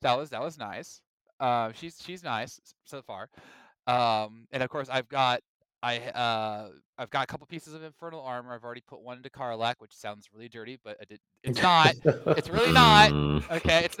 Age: 20-39